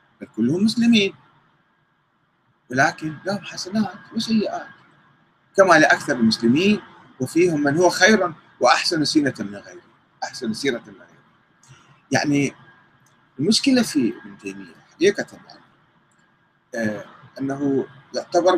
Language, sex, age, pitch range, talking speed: Arabic, male, 40-59, 130-210 Hz, 95 wpm